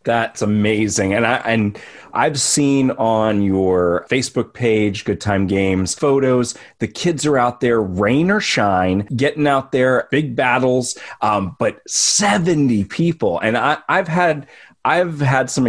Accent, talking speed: American, 150 wpm